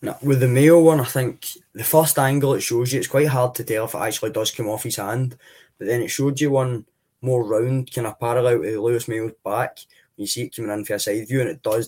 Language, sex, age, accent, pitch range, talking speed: English, male, 10-29, British, 110-130 Hz, 275 wpm